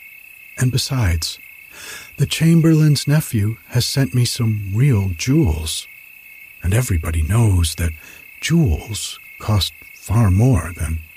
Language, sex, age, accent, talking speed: English, male, 60-79, American, 105 wpm